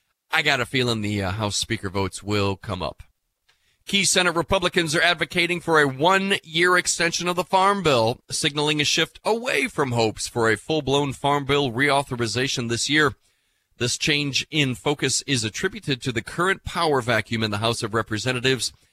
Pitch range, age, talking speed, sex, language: 115-155 Hz, 40-59, 175 wpm, male, English